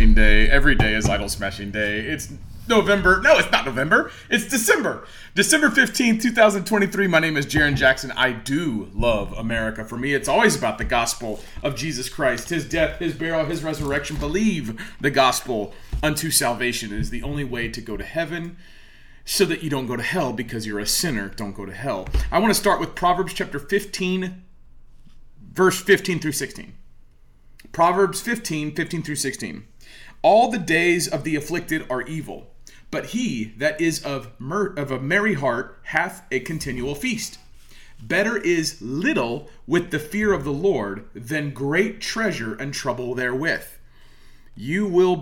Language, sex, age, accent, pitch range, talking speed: English, male, 30-49, American, 125-180 Hz, 170 wpm